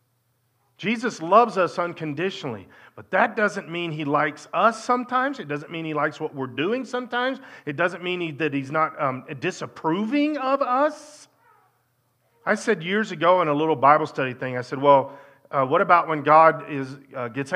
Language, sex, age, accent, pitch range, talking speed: English, male, 40-59, American, 155-250 Hz, 180 wpm